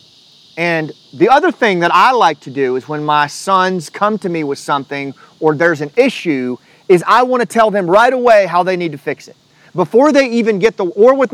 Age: 40-59